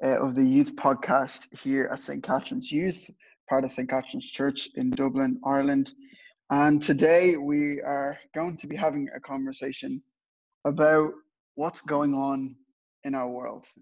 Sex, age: male, 20-39